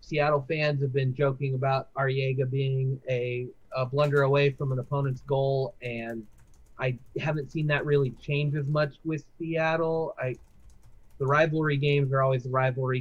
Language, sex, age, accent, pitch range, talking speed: English, male, 30-49, American, 130-155 Hz, 155 wpm